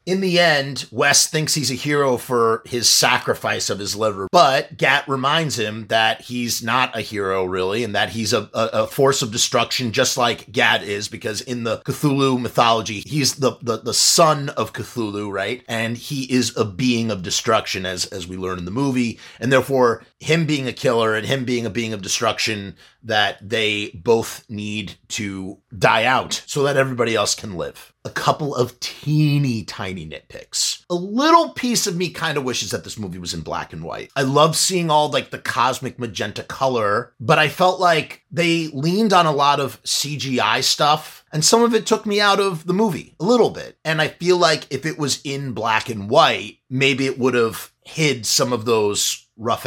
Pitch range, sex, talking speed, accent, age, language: 115-150 Hz, male, 200 wpm, American, 30-49, English